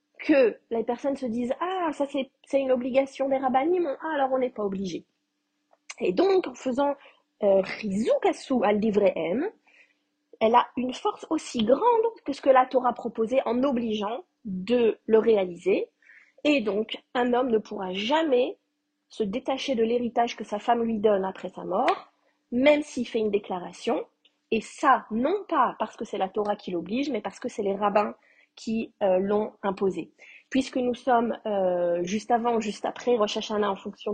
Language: French